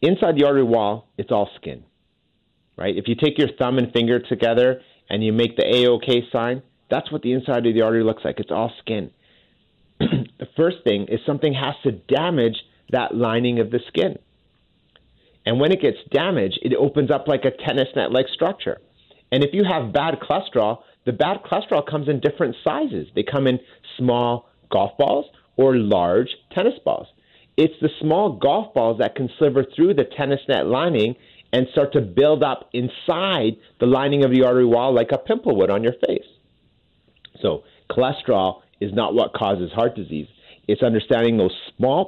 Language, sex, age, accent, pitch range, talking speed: English, male, 30-49, American, 115-150 Hz, 185 wpm